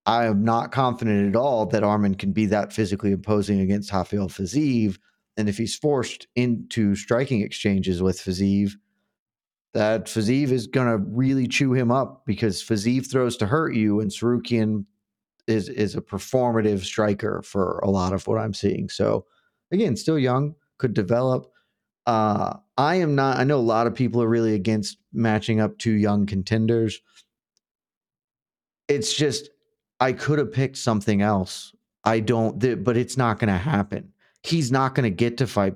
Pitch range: 105-130 Hz